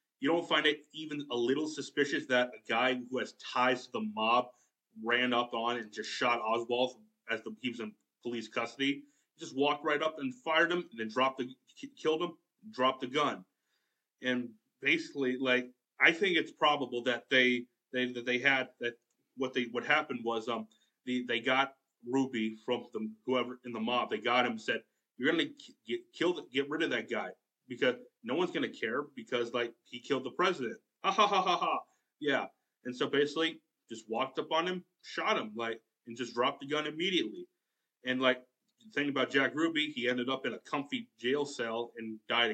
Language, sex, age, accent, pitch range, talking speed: English, male, 30-49, American, 120-150 Hz, 205 wpm